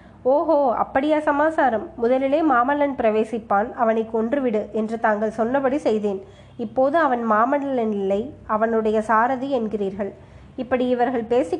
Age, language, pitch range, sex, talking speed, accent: 20-39, Tamil, 220-260 Hz, female, 115 wpm, native